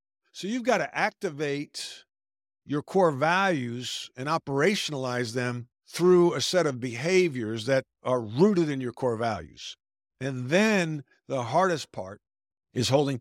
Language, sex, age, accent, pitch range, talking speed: English, male, 50-69, American, 125-160 Hz, 135 wpm